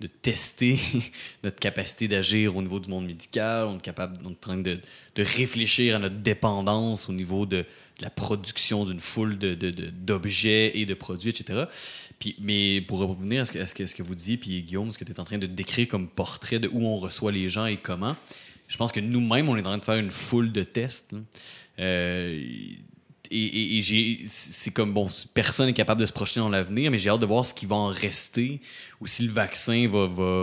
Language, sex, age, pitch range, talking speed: French, male, 20-39, 95-115 Hz, 225 wpm